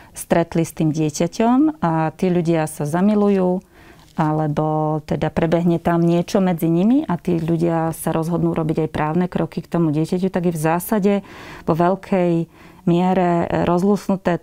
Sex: female